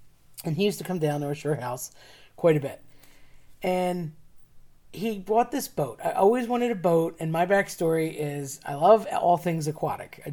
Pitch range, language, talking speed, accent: 150-185 Hz, English, 190 wpm, American